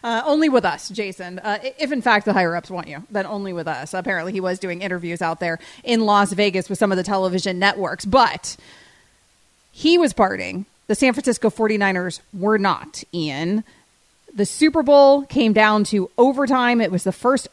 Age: 30-49